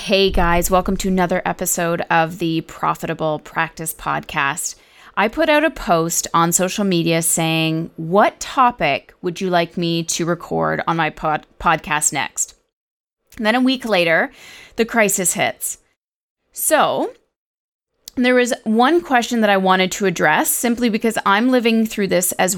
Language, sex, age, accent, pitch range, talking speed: English, female, 30-49, American, 175-230 Hz, 155 wpm